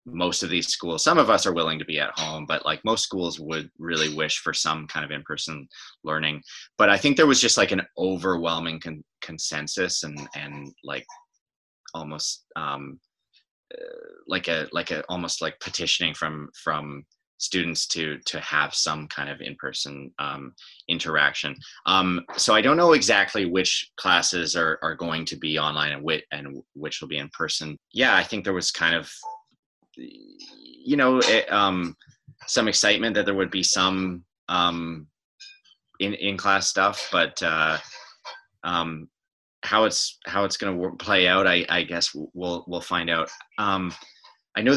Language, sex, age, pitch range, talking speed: English, male, 30-49, 80-100 Hz, 170 wpm